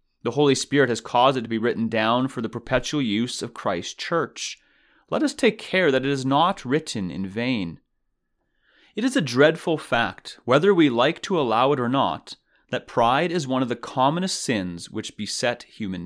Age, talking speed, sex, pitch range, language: 30-49, 195 wpm, male, 115-170 Hz, English